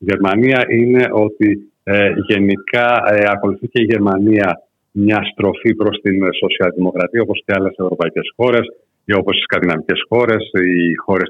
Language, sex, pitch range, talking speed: Greek, male, 95-115 Hz, 145 wpm